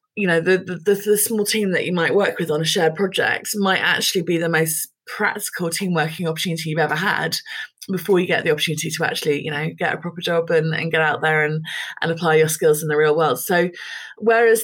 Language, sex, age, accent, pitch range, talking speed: English, female, 20-39, British, 155-190 Hz, 235 wpm